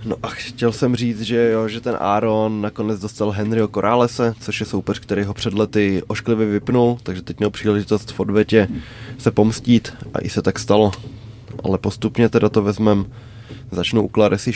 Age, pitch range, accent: 20-39, 105-115 Hz, native